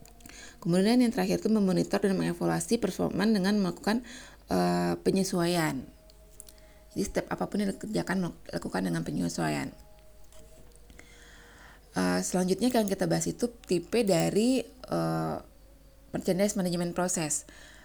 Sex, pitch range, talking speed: female, 155-195 Hz, 110 wpm